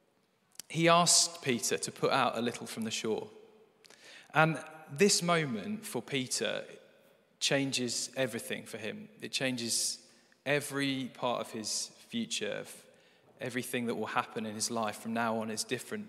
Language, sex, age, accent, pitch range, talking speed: English, male, 20-39, British, 120-150 Hz, 150 wpm